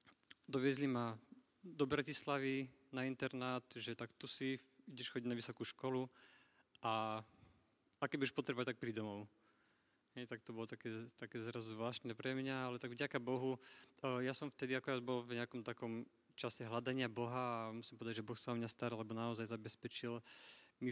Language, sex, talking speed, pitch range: Slovak, male, 175 wpm, 115-135 Hz